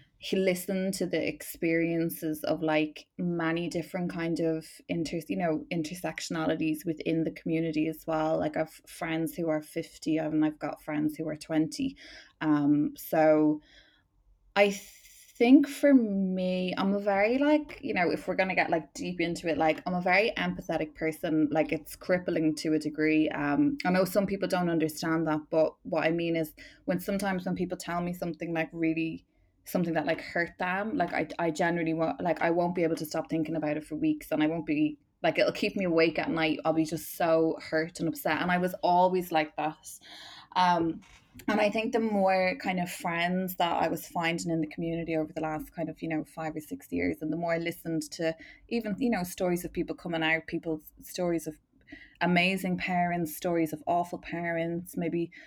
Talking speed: 200 wpm